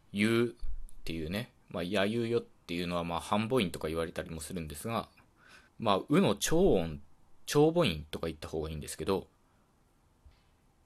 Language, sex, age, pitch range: Japanese, male, 20-39, 80-110 Hz